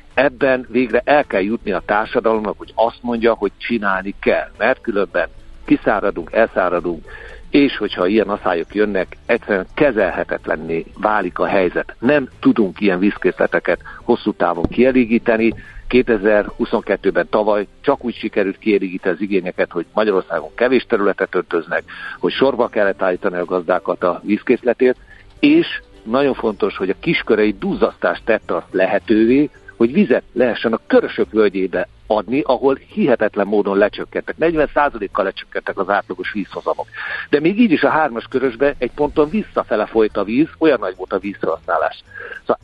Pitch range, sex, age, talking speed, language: 100-140 Hz, male, 60-79, 140 wpm, Hungarian